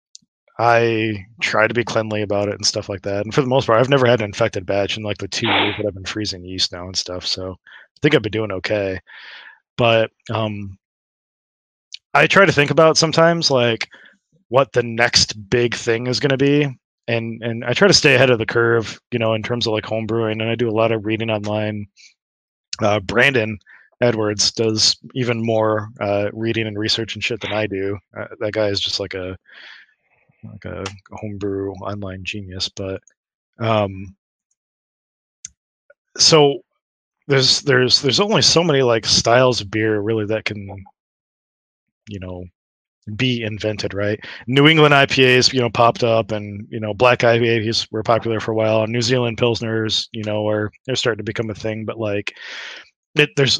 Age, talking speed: 20-39, 190 wpm